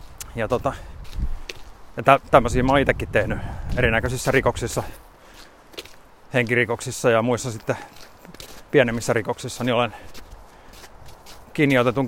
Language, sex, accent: Finnish, male, native